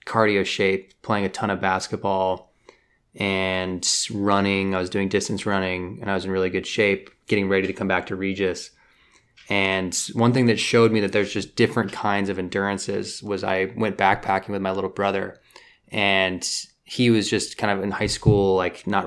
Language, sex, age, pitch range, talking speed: English, male, 20-39, 95-105 Hz, 190 wpm